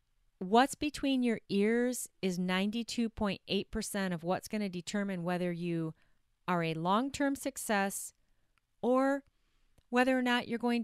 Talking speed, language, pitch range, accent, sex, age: 125 wpm, English, 185-245 Hz, American, female, 30-49